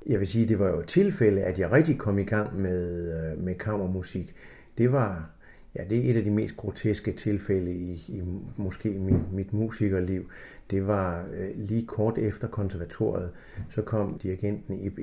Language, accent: Danish, native